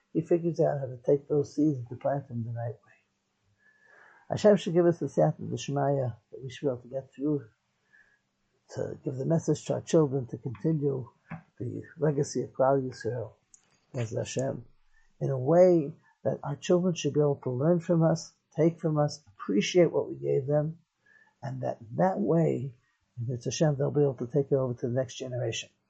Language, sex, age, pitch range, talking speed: English, male, 60-79, 130-160 Hz, 200 wpm